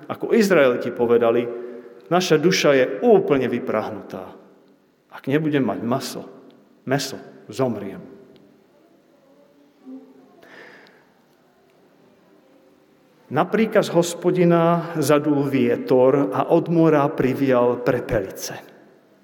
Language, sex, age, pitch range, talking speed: Slovak, male, 40-59, 135-180 Hz, 75 wpm